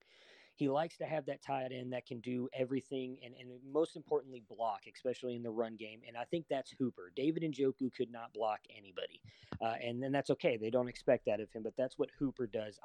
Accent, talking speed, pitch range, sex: American, 225 wpm, 120-145 Hz, male